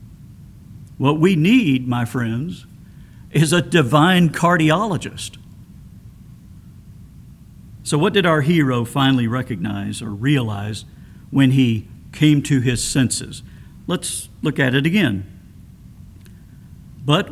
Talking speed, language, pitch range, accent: 105 wpm, English, 115-150 Hz, American